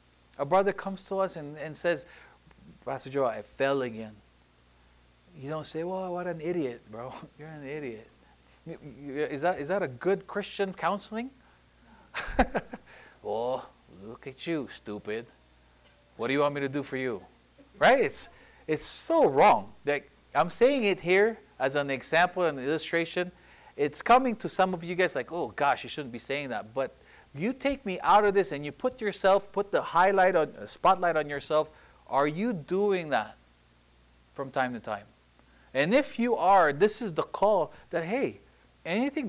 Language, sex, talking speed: English, male, 175 wpm